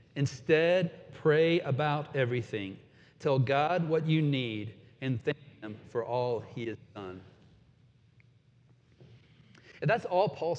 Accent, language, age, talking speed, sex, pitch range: American, English, 40-59, 120 wpm, male, 125-165 Hz